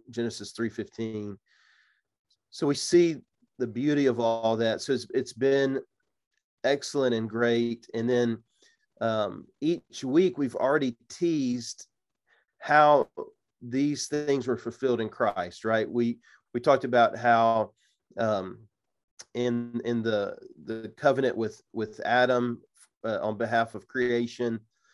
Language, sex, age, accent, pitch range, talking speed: English, male, 40-59, American, 110-125 Hz, 130 wpm